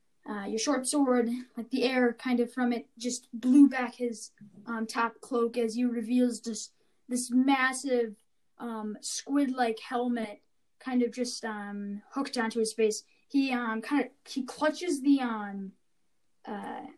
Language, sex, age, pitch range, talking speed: English, female, 10-29, 225-255 Hz, 155 wpm